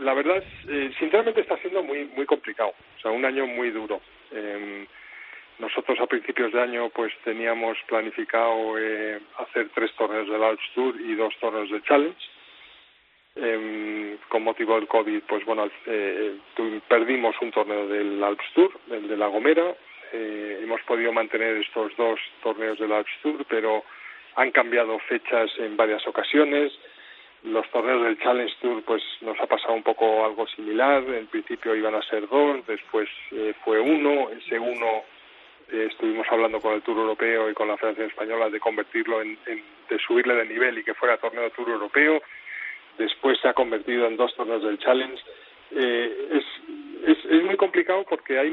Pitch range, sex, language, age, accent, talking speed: 110-165 Hz, male, Spanish, 40-59, Spanish, 175 wpm